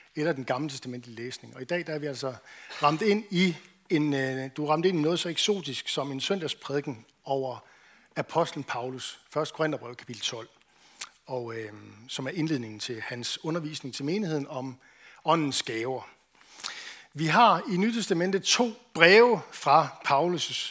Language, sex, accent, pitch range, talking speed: Danish, male, native, 135-175 Hz, 160 wpm